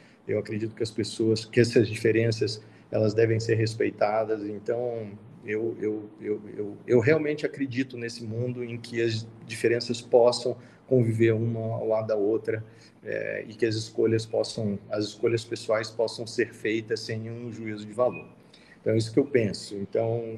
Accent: Brazilian